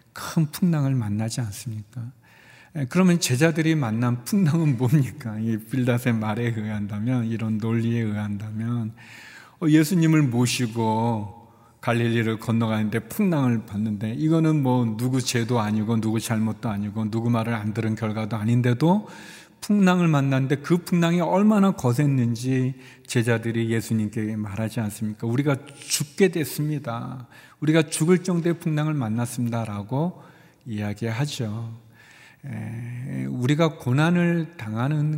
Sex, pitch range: male, 115-145 Hz